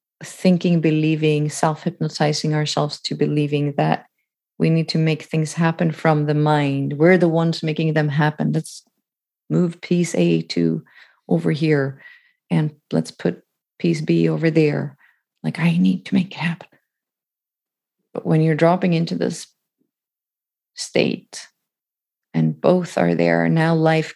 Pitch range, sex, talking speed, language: 145-170 Hz, female, 140 wpm, English